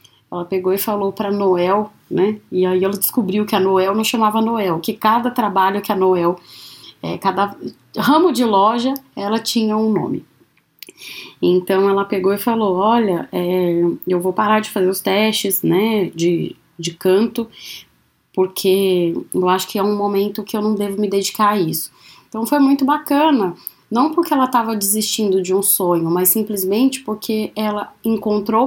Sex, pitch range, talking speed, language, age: female, 180-225 Hz, 170 wpm, Portuguese, 20-39